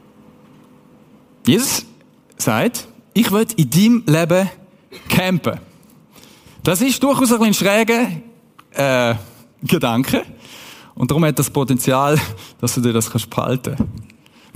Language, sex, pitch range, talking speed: German, male, 215-255 Hz, 105 wpm